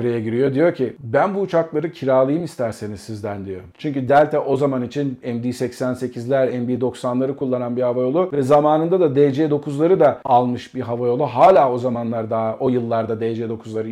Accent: native